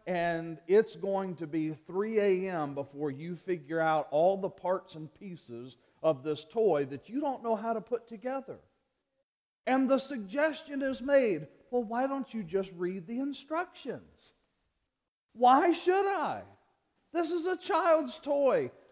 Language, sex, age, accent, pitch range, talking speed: English, male, 40-59, American, 190-260 Hz, 150 wpm